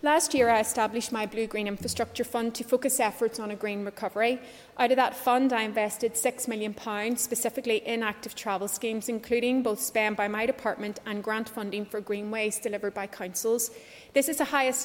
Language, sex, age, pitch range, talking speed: English, female, 30-49, 210-245 Hz, 195 wpm